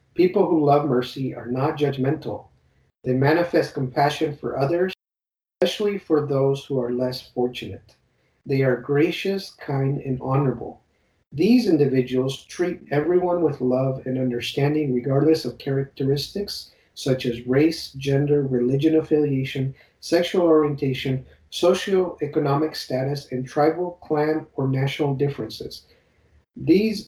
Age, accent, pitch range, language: 50-69, American, 130-165 Hz, English